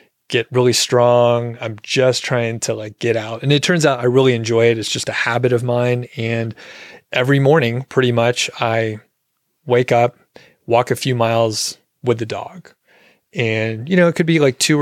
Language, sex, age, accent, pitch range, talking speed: English, male, 30-49, American, 115-130 Hz, 190 wpm